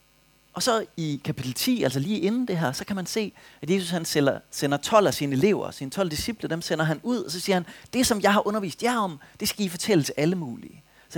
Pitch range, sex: 145-205 Hz, male